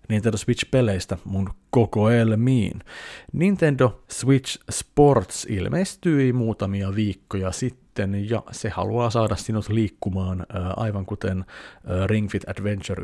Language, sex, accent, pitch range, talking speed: Finnish, male, native, 95-125 Hz, 105 wpm